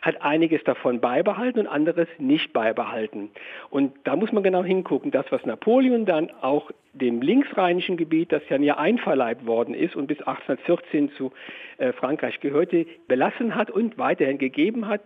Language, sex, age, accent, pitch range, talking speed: German, male, 50-69, German, 145-225 Hz, 160 wpm